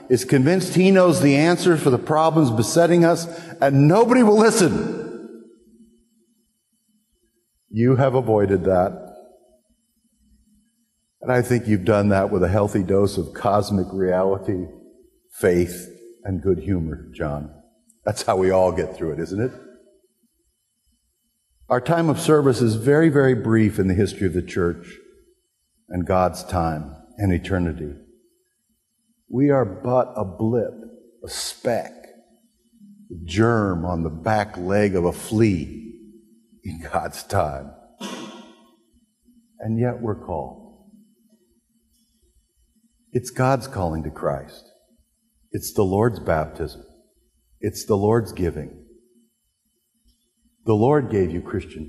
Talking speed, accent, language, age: 125 wpm, American, English, 50-69